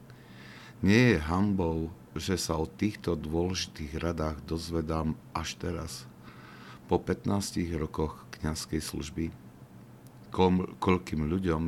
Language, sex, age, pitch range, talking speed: Slovak, male, 50-69, 75-90 Hz, 100 wpm